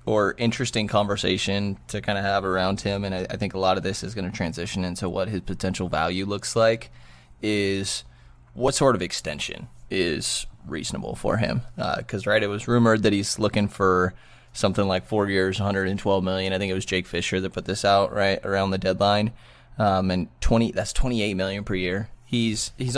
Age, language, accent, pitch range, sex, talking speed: 20-39, English, American, 95-110 Hz, male, 200 wpm